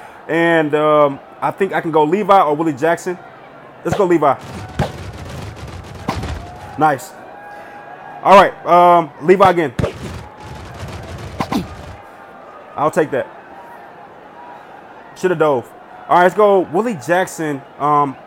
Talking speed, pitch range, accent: 110 wpm, 150-195 Hz, American